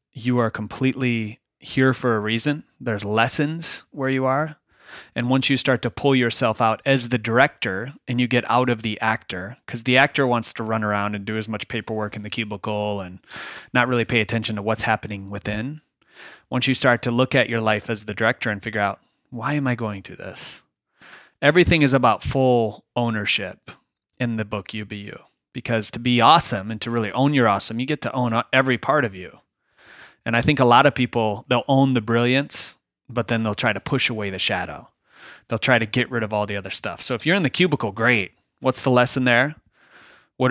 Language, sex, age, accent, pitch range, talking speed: English, male, 30-49, American, 110-130 Hz, 215 wpm